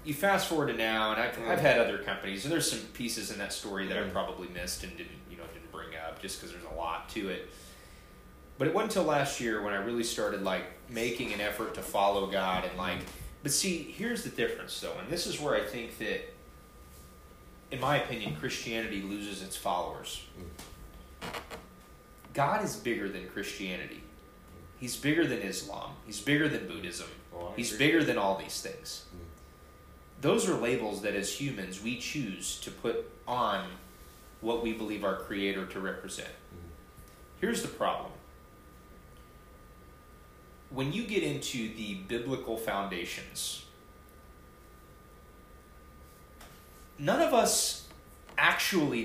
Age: 30-49